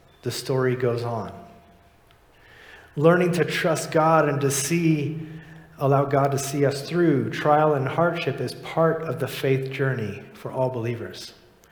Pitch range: 125-155 Hz